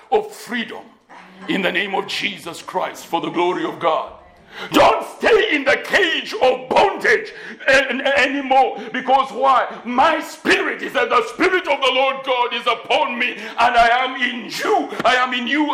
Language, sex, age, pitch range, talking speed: English, male, 60-79, 230-275 Hz, 170 wpm